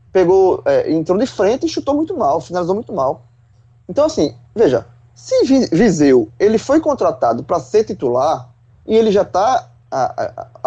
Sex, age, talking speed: male, 20-39, 155 wpm